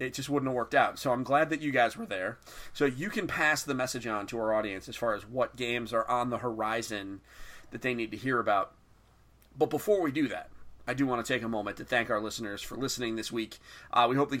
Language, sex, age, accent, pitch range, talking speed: English, male, 30-49, American, 115-140 Hz, 265 wpm